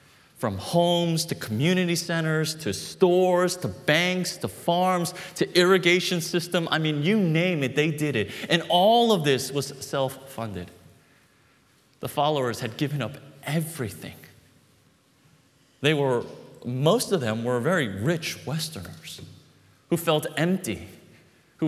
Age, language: 30-49, English